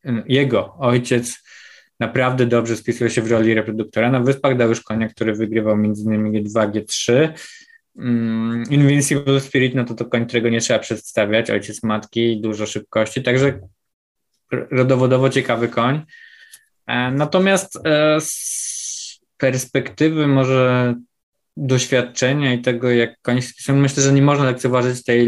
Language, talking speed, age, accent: Polish, 125 wpm, 20-39, native